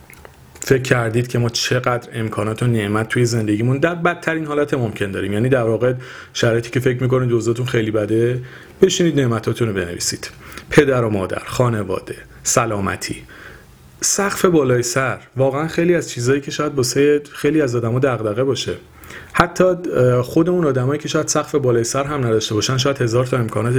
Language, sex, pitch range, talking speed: Persian, male, 105-135 Hz, 165 wpm